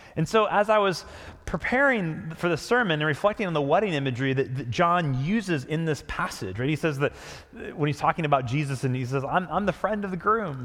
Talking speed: 230 wpm